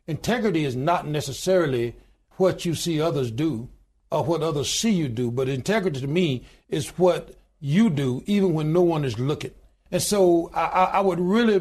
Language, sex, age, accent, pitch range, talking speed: English, male, 60-79, American, 140-185 Hz, 180 wpm